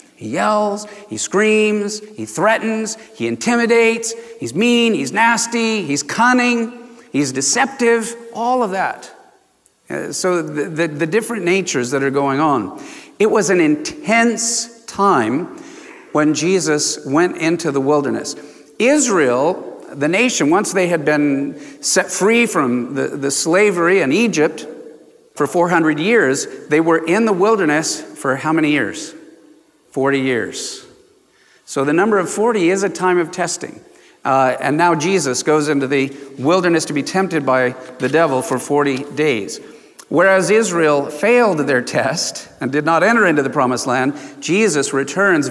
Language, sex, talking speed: English, male, 145 wpm